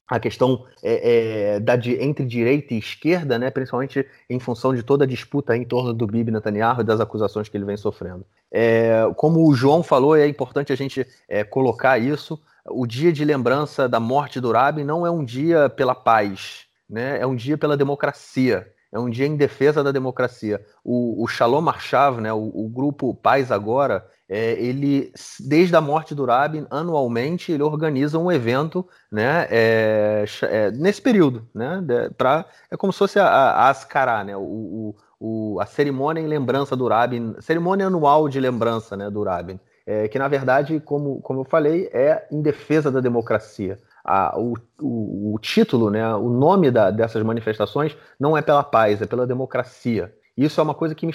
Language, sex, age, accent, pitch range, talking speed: Portuguese, male, 30-49, Brazilian, 115-150 Hz, 180 wpm